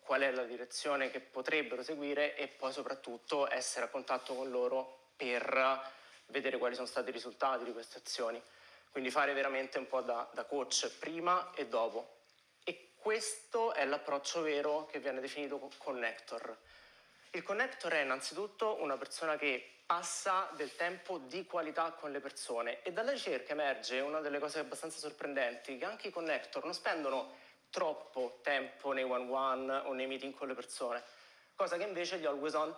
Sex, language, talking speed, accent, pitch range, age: male, Italian, 165 wpm, native, 130-155 Hz, 30-49